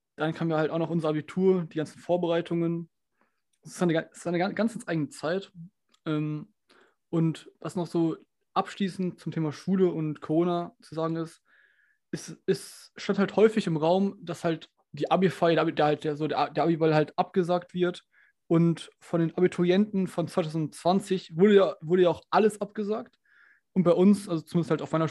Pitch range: 150-180 Hz